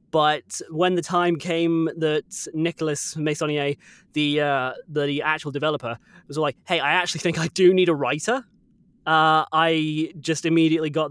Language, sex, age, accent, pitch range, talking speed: English, male, 20-39, British, 145-175 Hz, 155 wpm